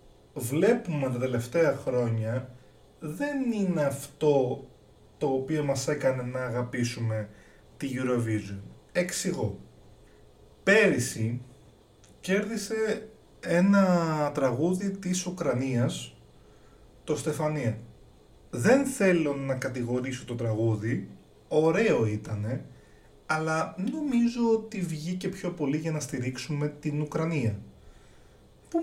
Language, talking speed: Greek, 90 wpm